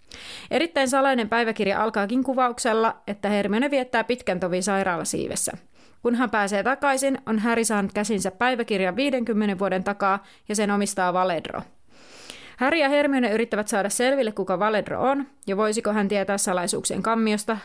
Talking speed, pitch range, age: 145 wpm, 200-250 Hz, 30-49